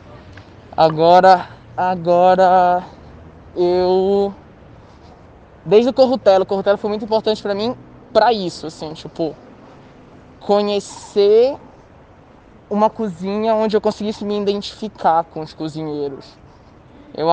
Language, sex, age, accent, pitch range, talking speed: Portuguese, male, 20-39, Brazilian, 155-220 Hz, 100 wpm